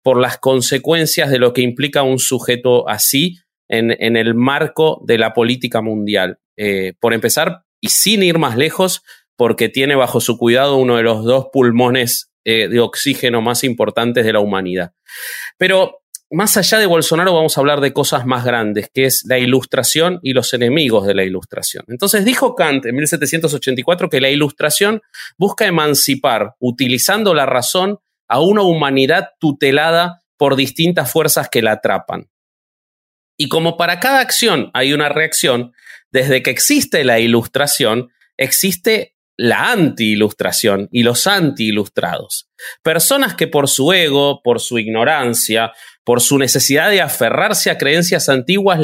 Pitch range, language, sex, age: 120-170 Hz, Spanish, male, 30-49